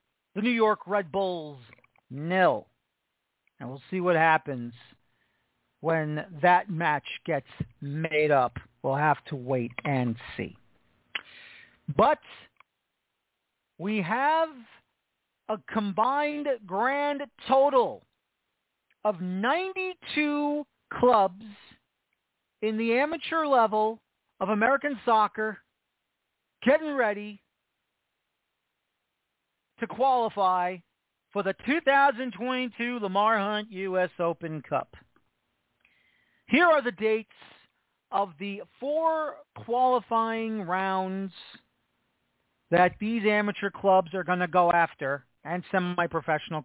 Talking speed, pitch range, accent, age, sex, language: 95 wpm, 160-230 Hz, American, 40-59, male, English